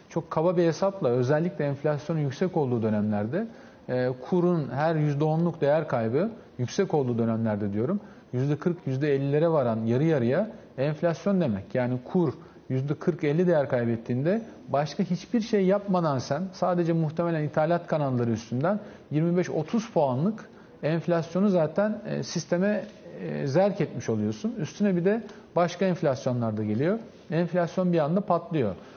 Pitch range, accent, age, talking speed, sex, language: 135-185 Hz, native, 40-59, 120 wpm, male, Turkish